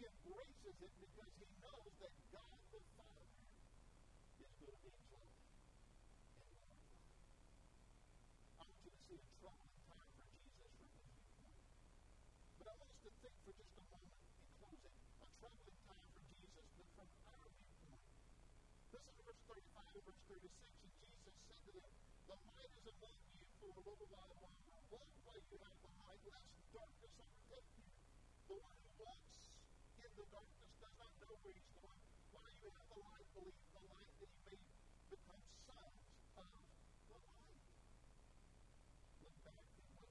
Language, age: English, 50-69